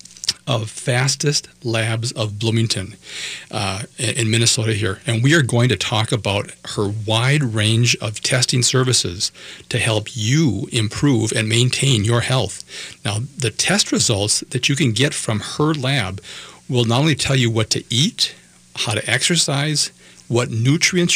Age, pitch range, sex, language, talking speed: 40-59, 110-135 Hz, male, English, 155 wpm